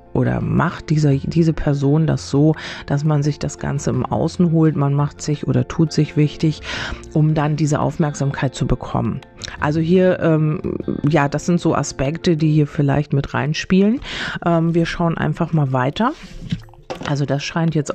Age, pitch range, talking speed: 40-59, 140-170 Hz, 165 wpm